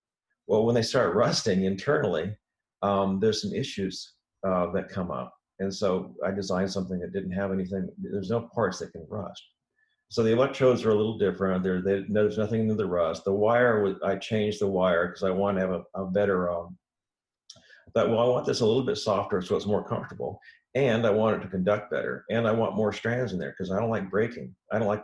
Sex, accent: male, American